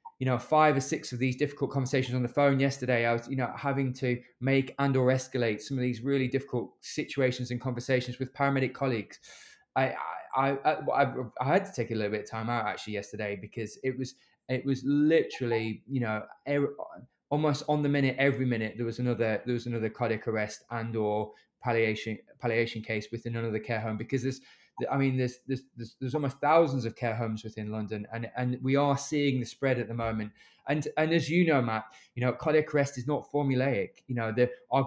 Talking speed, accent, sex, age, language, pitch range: 210 wpm, British, male, 20-39, English, 115-135 Hz